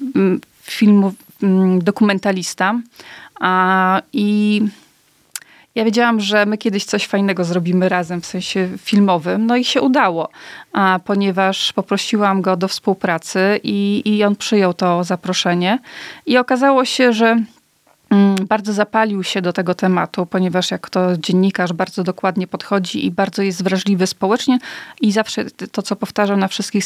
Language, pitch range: Polish, 185-225 Hz